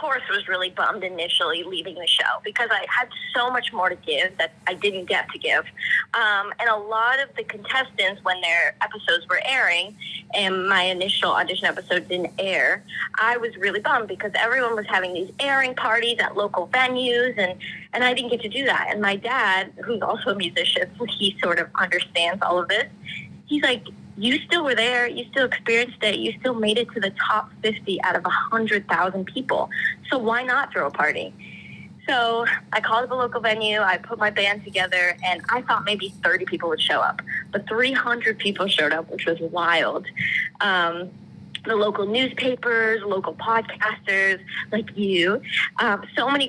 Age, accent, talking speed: 20-39, American, 185 wpm